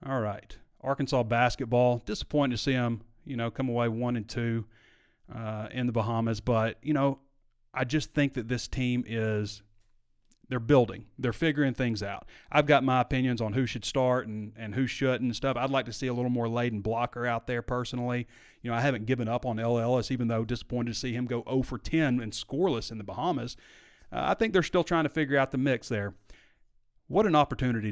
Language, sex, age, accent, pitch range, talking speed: English, male, 30-49, American, 110-135 Hz, 215 wpm